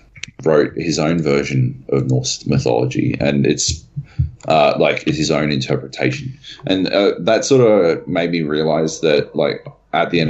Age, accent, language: 30-49, Australian, English